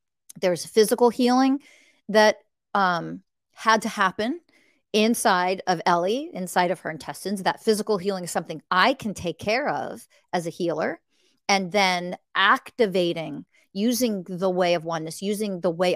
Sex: female